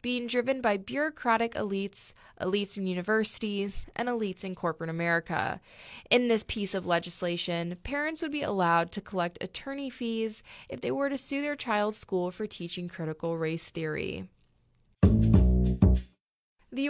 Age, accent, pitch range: 20-39, American, 175-230 Hz